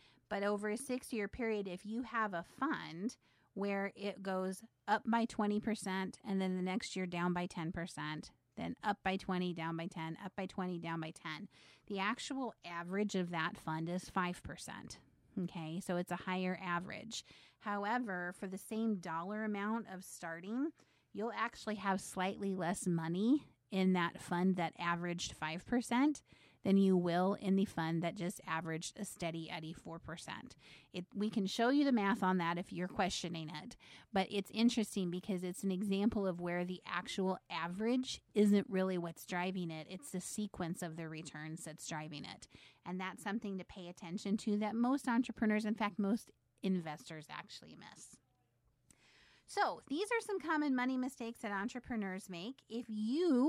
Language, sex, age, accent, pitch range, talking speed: English, female, 30-49, American, 175-220 Hz, 165 wpm